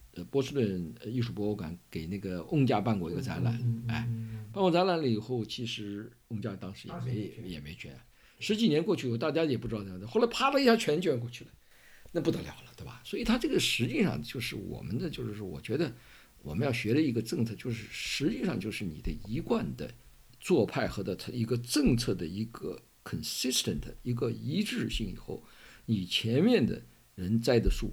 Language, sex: Chinese, male